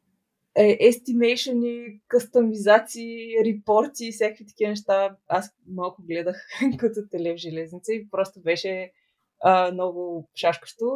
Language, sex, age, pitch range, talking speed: Bulgarian, female, 20-39, 180-220 Hz, 100 wpm